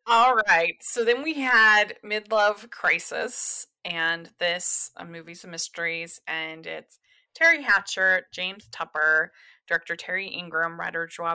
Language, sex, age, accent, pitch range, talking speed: English, female, 20-39, American, 170-215 Hz, 130 wpm